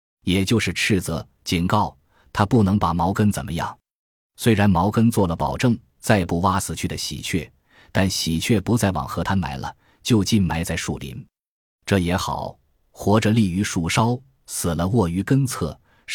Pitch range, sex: 85-110 Hz, male